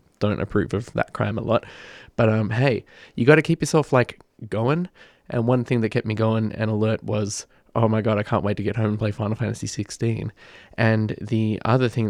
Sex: male